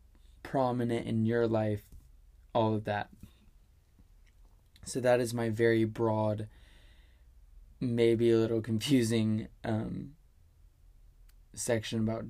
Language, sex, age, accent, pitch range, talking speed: English, male, 20-39, American, 95-120 Hz, 100 wpm